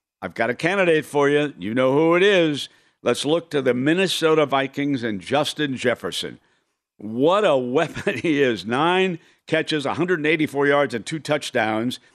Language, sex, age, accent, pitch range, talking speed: English, male, 60-79, American, 115-150 Hz, 160 wpm